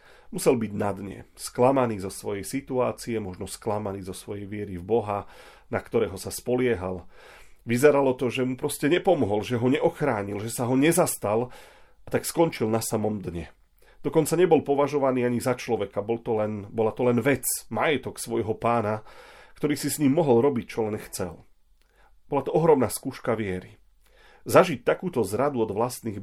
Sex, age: male, 40-59